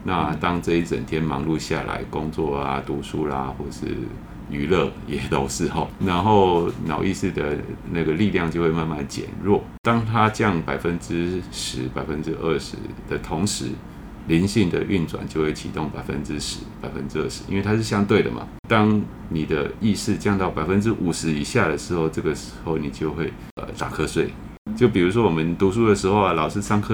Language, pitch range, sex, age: Chinese, 80-110 Hz, male, 30-49